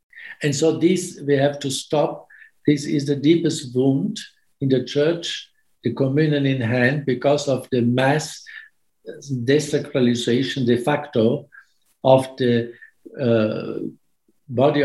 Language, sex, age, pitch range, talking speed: English, male, 60-79, 130-155 Hz, 120 wpm